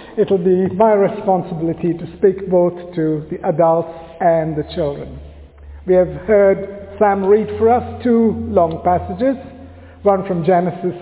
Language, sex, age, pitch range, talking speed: English, male, 60-79, 190-245 Hz, 140 wpm